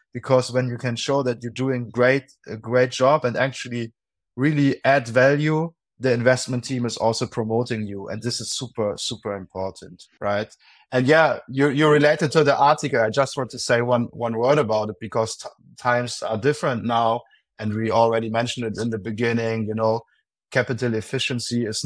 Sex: male